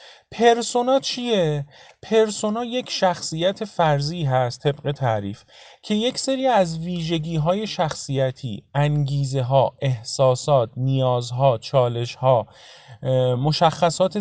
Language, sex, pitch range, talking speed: Persian, male, 140-205 Hz, 95 wpm